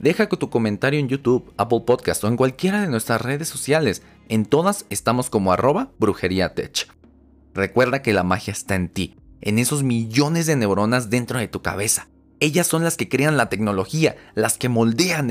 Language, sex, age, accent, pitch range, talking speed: Spanish, male, 30-49, Mexican, 100-140 Hz, 185 wpm